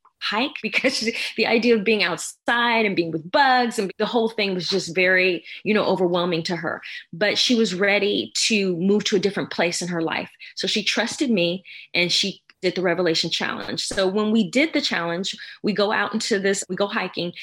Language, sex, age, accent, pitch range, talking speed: English, female, 20-39, American, 190-235 Hz, 205 wpm